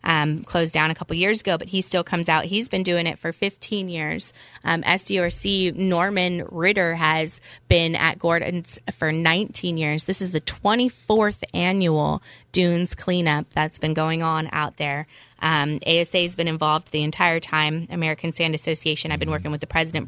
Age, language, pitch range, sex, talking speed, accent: 20-39, English, 160-185 Hz, female, 180 wpm, American